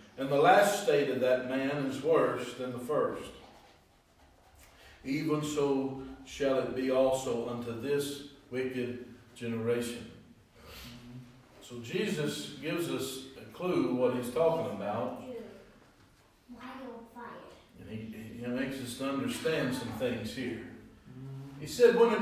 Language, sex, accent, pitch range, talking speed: English, male, American, 120-165 Hz, 125 wpm